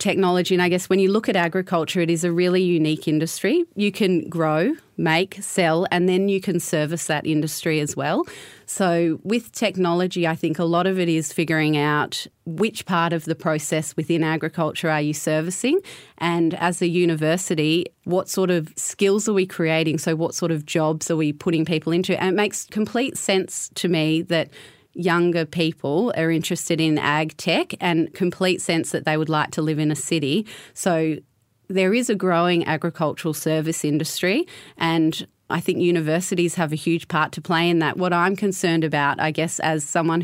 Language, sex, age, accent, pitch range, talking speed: English, female, 30-49, Australian, 155-180 Hz, 190 wpm